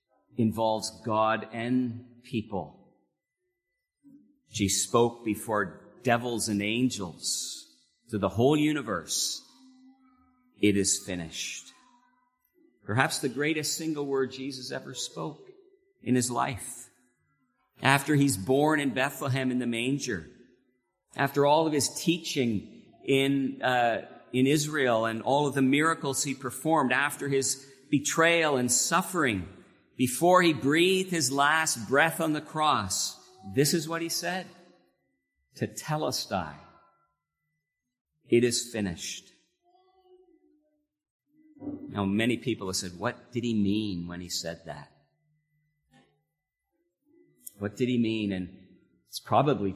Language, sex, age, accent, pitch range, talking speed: English, male, 50-69, American, 110-160 Hz, 120 wpm